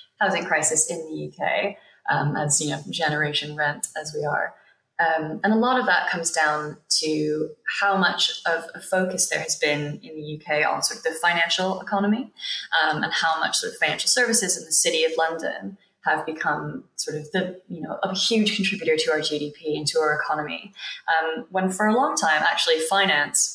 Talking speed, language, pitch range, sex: 200 wpm, English, 155-210 Hz, female